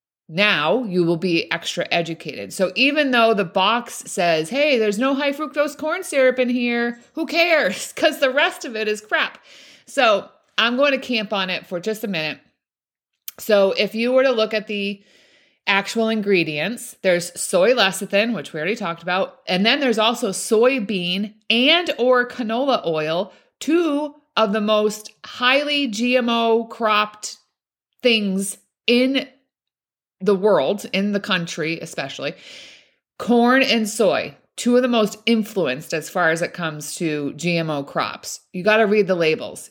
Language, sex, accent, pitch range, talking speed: English, female, American, 180-245 Hz, 155 wpm